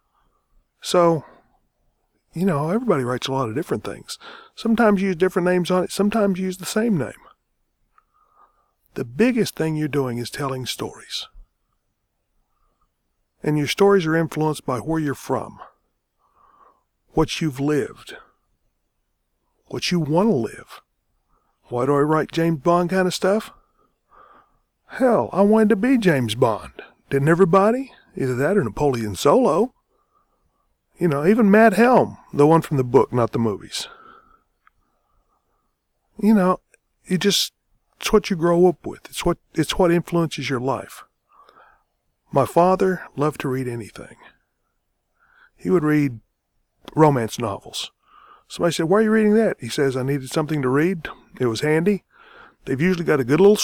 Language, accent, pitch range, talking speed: English, American, 140-205 Hz, 150 wpm